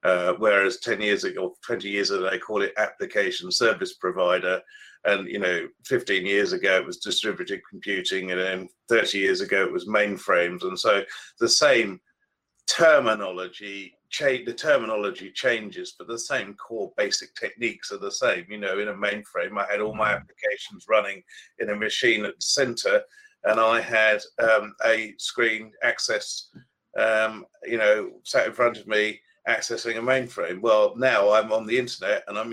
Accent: British